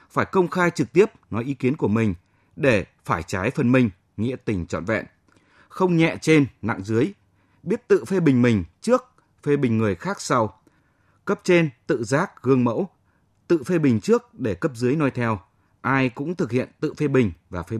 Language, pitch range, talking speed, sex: Vietnamese, 105-150 Hz, 200 wpm, male